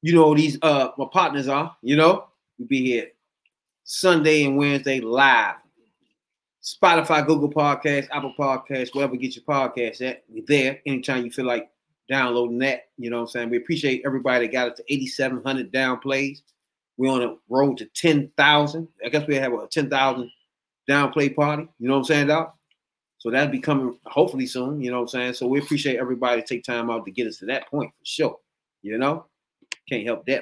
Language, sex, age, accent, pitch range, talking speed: English, male, 30-49, American, 130-150 Hz, 195 wpm